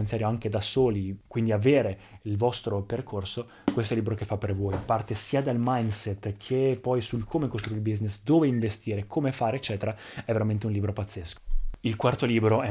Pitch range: 105-120 Hz